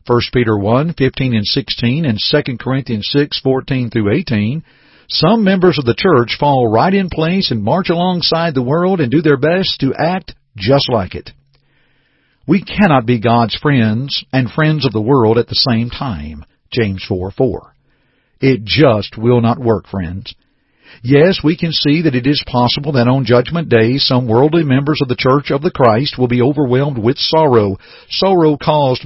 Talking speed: 180 wpm